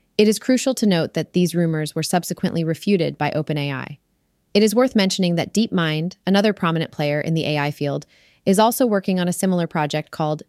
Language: English